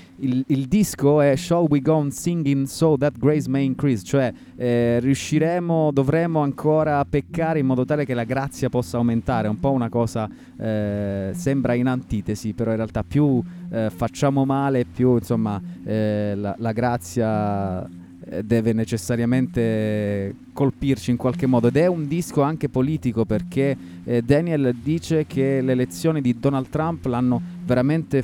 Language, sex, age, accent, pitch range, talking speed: Italian, male, 30-49, native, 120-150 Hz, 155 wpm